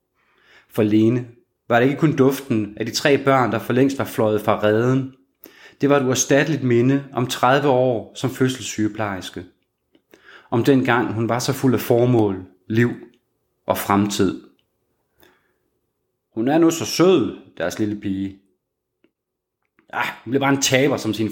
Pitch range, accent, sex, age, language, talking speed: 105-130 Hz, native, male, 30-49, Danish, 155 wpm